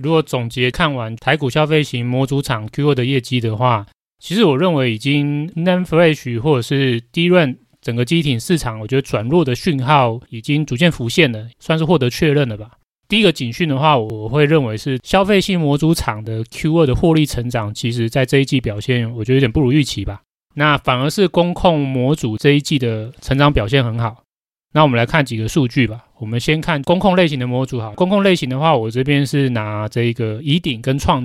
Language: Chinese